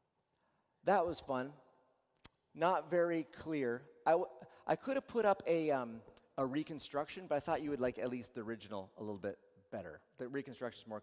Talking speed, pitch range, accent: 180 wpm, 150-230 Hz, American